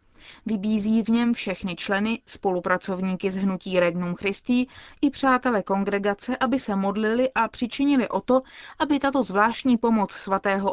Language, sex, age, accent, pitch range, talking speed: Czech, female, 20-39, native, 195-245 Hz, 140 wpm